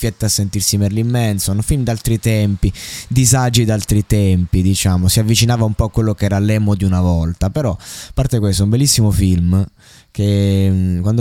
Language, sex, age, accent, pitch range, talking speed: Italian, male, 20-39, native, 90-105 Hz, 180 wpm